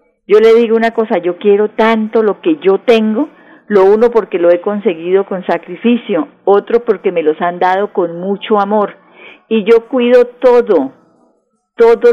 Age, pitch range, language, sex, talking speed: 50-69, 180-230 Hz, Spanish, female, 170 wpm